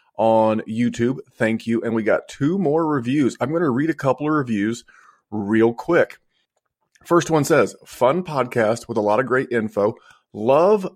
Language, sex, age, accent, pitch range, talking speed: English, male, 30-49, American, 115-145 Hz, 175 wpm